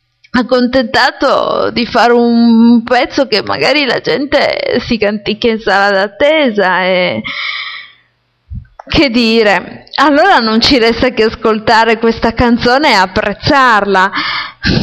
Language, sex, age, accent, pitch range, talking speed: Italian, female, 20-39, native, 205-260 Hz, 110 wpm